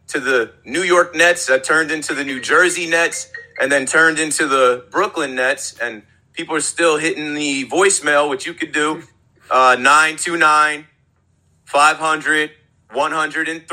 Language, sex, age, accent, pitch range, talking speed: English, male, 30-49, American, 135-180 Hz, 135 wpm